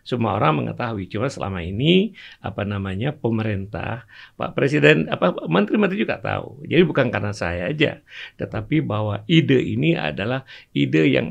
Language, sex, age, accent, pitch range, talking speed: Indonesian, male, 50-69, native, 110-155 Hz, 145 wpm